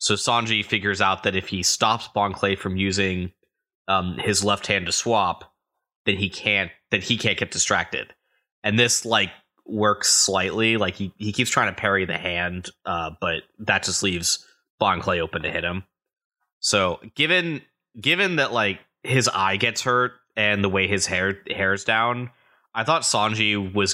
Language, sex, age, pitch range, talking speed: English, male, 20-39, 95-110 Hz, 180 wpm